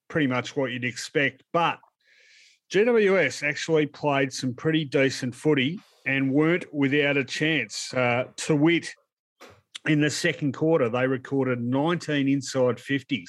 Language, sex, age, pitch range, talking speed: English, male, 40-59, 125-155 Hz, 130 wpm